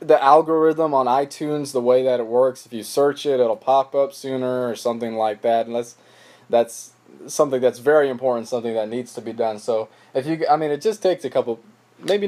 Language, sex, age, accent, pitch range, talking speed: English, male, 20-39, American, 115-155 Hz, 220 wpm